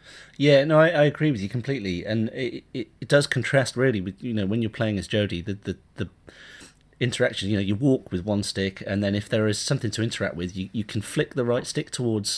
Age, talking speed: 30-49, 245 wpm